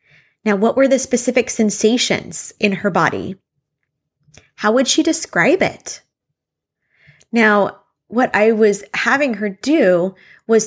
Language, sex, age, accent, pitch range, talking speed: English, female, 20-39, American, 185-235 Hz, 125 wpm